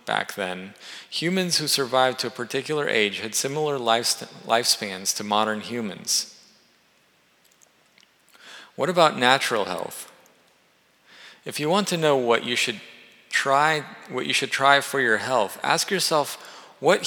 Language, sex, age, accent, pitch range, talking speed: English, male, 40-59, American, 120-160 Hz, 135 wpm